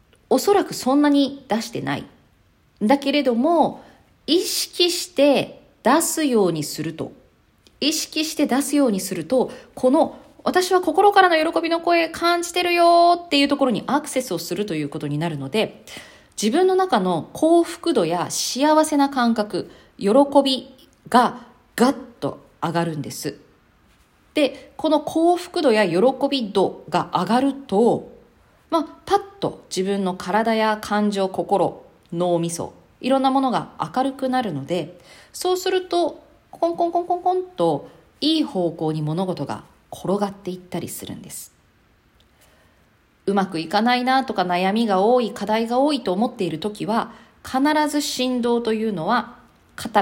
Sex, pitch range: female, 190-305 Hz